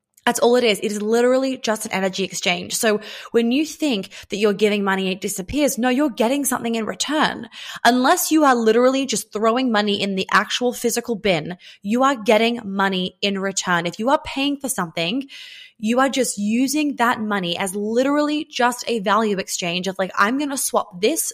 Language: English